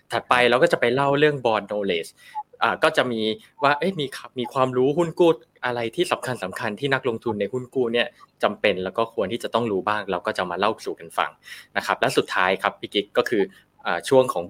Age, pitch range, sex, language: 20-39, 110-140 Hz, male, Thai